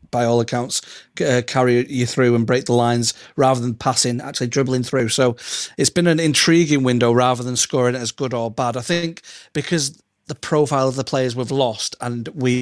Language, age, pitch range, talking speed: English, 30-49, 120-140 Hz, 200 wpm